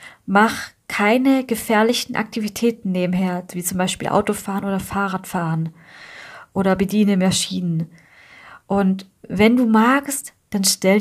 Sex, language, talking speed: female, German, 110 wpm